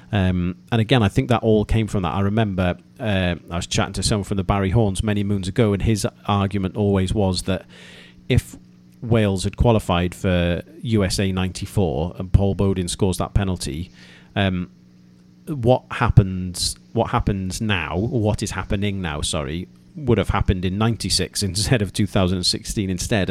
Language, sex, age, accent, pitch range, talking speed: English, male, 40-59, British, 90-110 Hz, 165 wpm